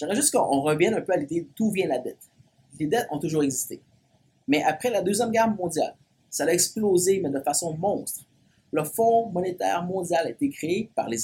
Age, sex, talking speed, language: 30-49, male, 210 wpm, English